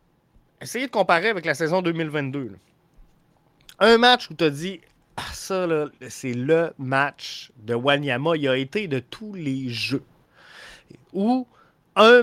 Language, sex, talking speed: French, male, 160 wpm